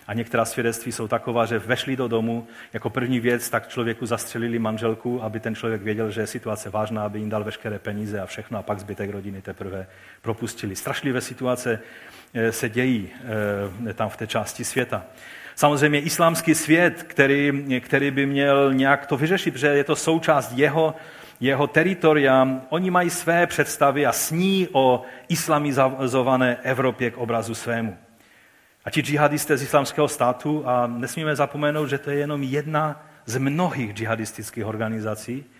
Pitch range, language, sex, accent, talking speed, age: 115-150 Hz, Czech, male, native, 155 wpm, 40-59